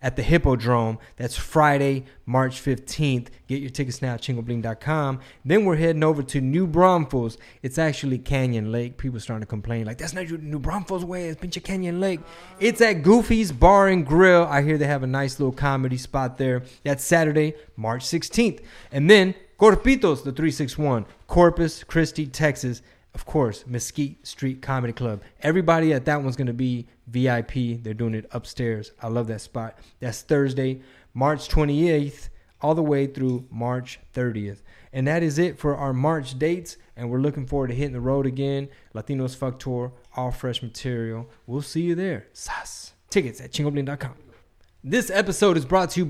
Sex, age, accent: male, 20-39, American